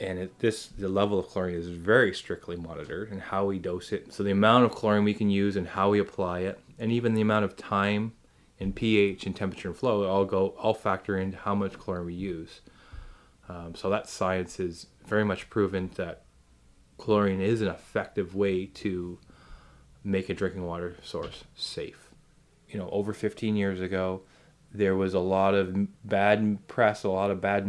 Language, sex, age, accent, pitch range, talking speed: English, male, 20-39, American, 90-105 Hz, 195 wpm